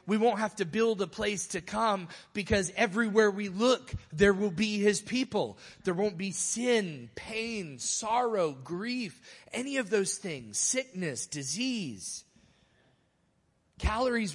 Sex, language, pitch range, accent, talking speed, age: male, English, 130-205 Hz, American, 135 wpm, 30-49